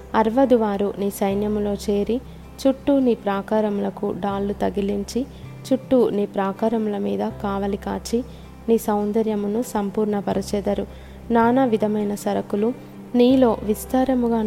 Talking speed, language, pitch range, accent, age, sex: 100 wpm, Telugu, 205-230 Hz, native, 20-39, female